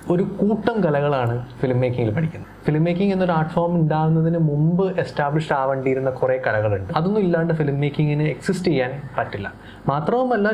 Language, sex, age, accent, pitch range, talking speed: Malayalam, male, 20-39, native, 125-165 Hz, 135 wpm